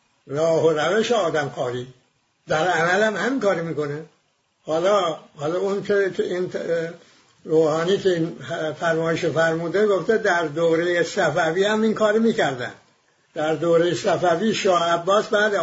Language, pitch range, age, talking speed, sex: English, 155-205 Hz, 60-79, 135 wpm, male